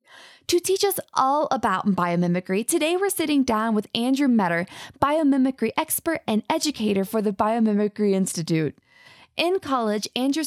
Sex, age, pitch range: female, 20-39, 215-290 Hz